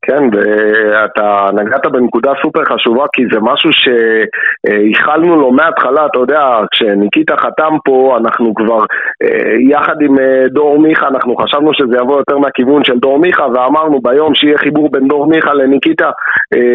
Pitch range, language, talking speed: 110-140 Hz, Hebrew, 145 wpm